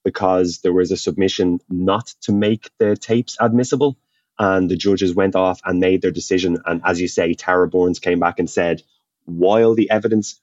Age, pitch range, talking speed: 20-39, 85-105 Hz, 190 wpm